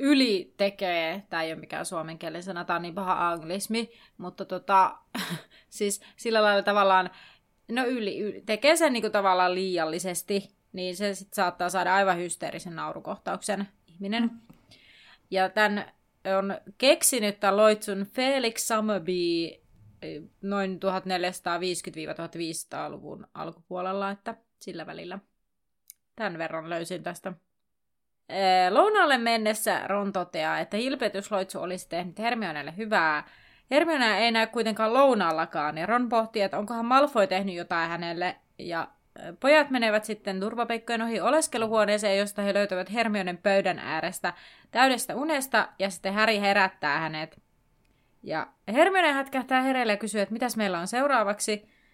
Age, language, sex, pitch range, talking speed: 30-49, Finnish, female, 180-230 Hz, 125 wpm